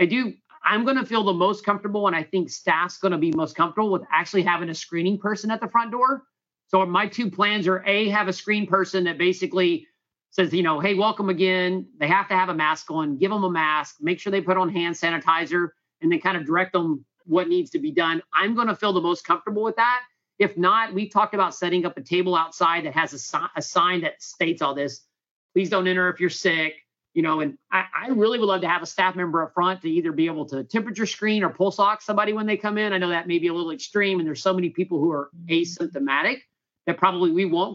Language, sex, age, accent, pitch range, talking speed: English, male, 40-59, American, 170-210 Hz, 255 wpm